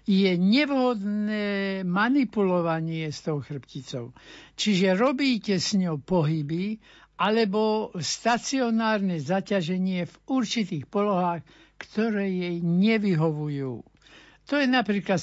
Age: 60-79